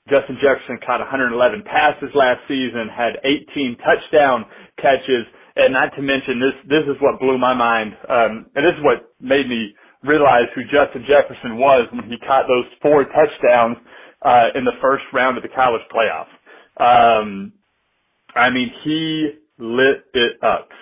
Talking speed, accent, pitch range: 160 wpm, American, 120-150 Hz